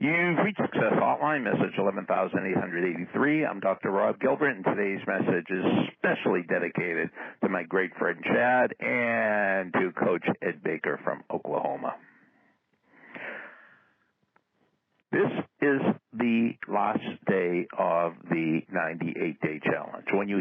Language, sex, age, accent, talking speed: English, male, 60-79, American, 115 wpm